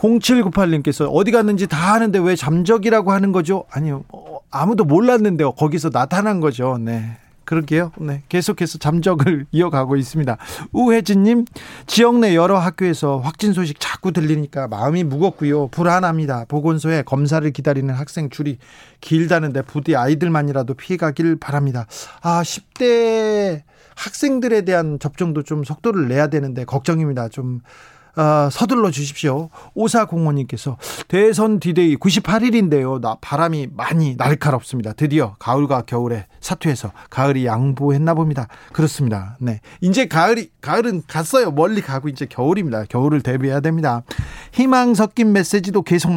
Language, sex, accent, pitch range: Korean, male, native, 135-185 Hz